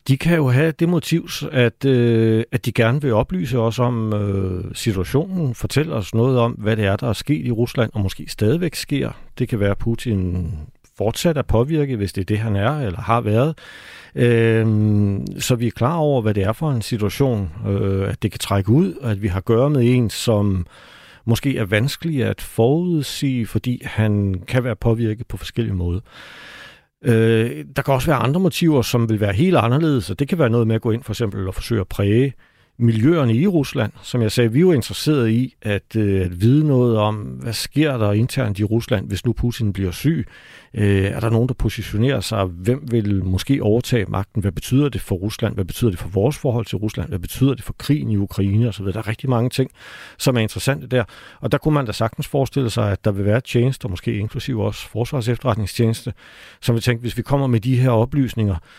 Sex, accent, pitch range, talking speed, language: male, native, 105-130 Hz, 215 wpm, Danish